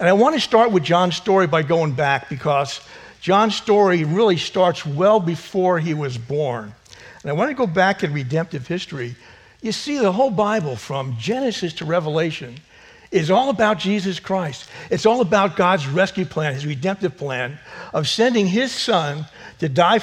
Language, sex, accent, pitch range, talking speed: English, male, American, 145-195 Hz, 175 wpm